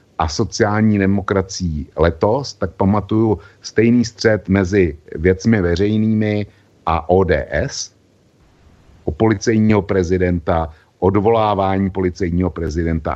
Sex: male